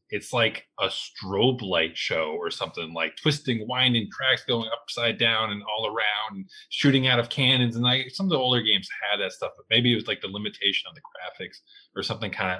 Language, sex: English, male